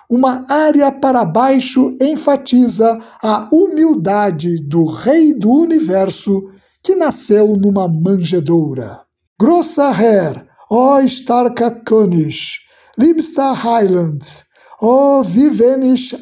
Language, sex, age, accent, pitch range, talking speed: Portuguese, male, 60-79, Brazilian, 200-275 Hz, 90 wpm